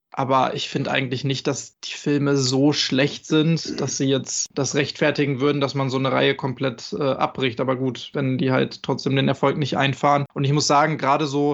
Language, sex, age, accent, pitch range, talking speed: German, male, 20-39, German, 140-155 Hz, 215 wpm